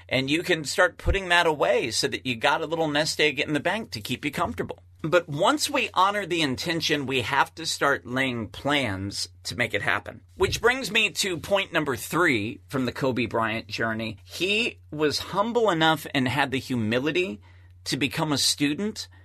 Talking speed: 195 wpm